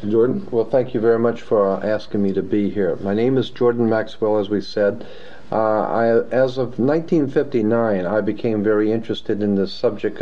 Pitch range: 105-120 Hz